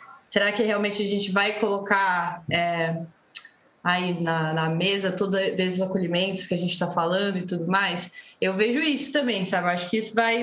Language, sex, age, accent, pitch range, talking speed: Portuguese, female, 20-39, Brazilian, 205-295 Hz, 185 wpm